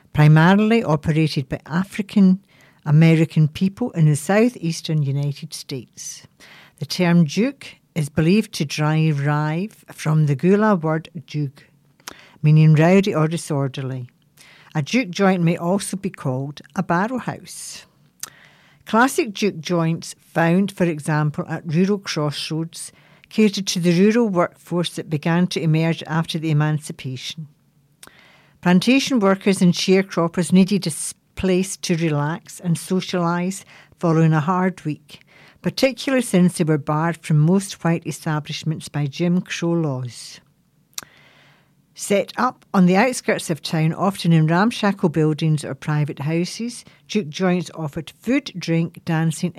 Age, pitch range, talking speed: 60-79, 155-190 Hz, 125 wpm